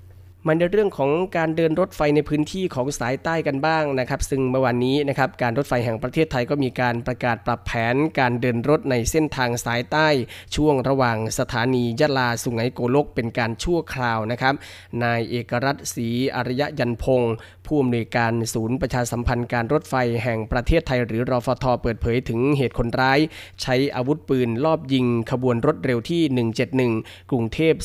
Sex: male